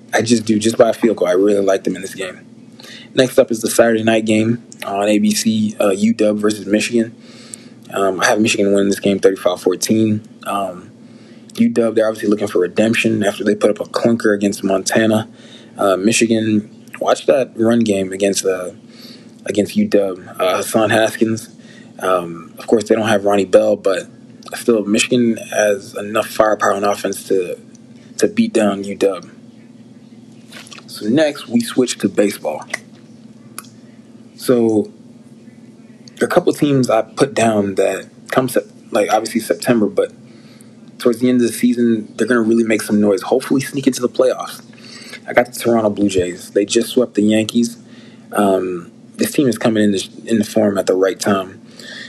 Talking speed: 175 wpm